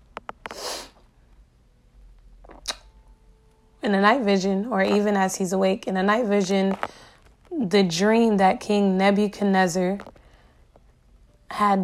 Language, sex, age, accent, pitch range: English, female, 20-39, American, 185-215 Hz